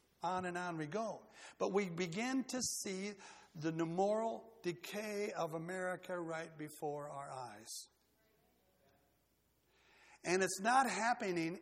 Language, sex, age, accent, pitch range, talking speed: English, male, 60-79, American, 155-205 Hz, 120 wpm